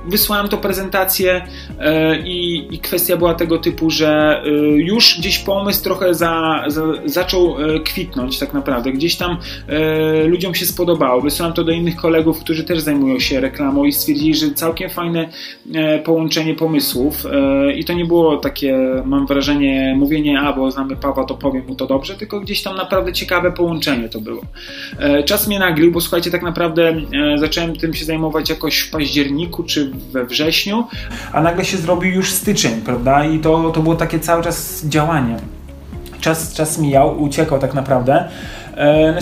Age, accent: 30-49, native